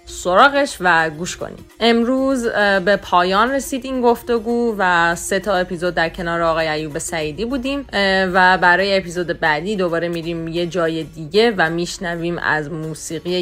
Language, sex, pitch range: English, female, 170-230 Hz